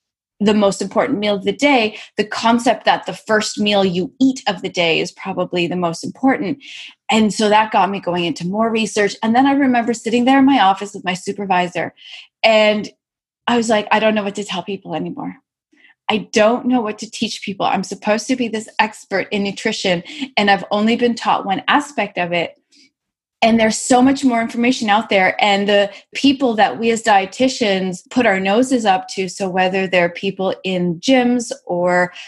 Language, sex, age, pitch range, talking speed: English, female, 20-39, 190-235 Hz, 200 wpm